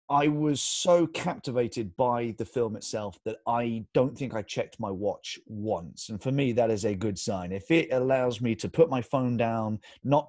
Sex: male